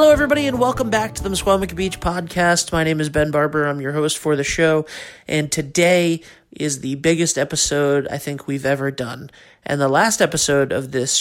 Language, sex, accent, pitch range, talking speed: English, male, American, 140-165 Hz, 205 wpm